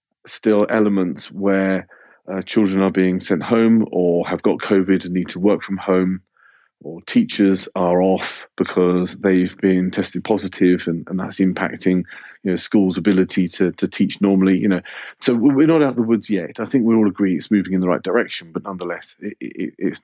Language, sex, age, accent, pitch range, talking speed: English, male, 40-59, British, 95-110 Hz, 190 wpm